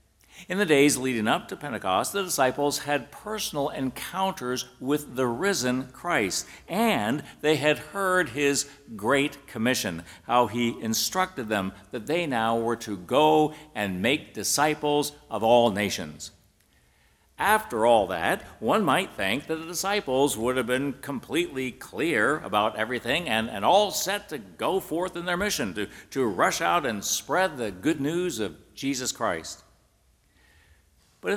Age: 60-79